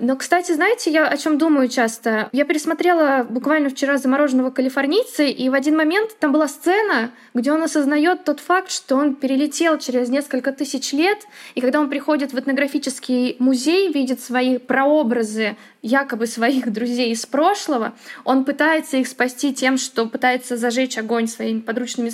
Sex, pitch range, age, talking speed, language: female, 235-285 Hz, 20-39, 160 wpm, Russian